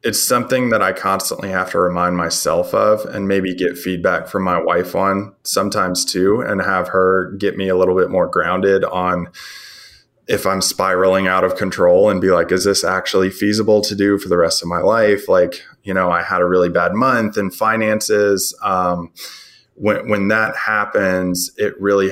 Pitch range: 90-100 Hz